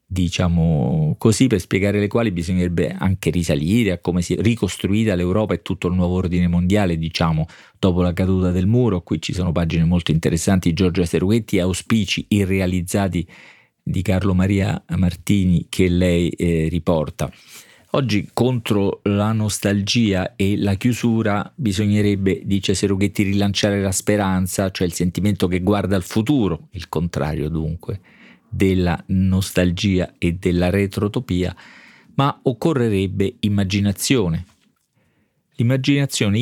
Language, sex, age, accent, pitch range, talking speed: Italian, male, 40-59, native, 90-115 Hz, 130 wpm